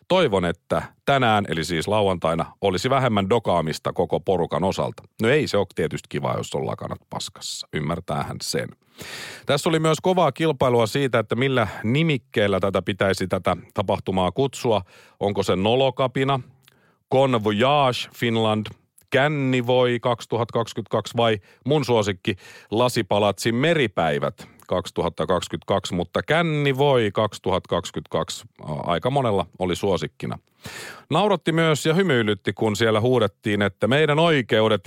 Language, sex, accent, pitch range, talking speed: Finnish, male, native, 100-125 Hz, 120 wpm